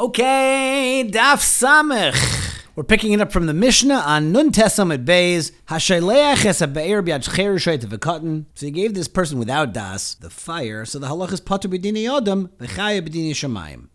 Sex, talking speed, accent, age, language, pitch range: male, 140 wpm, American, 40-59, English, 115-190 Hz